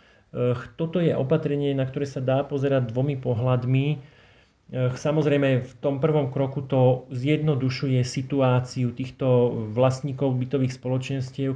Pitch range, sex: 125-140 Hz, male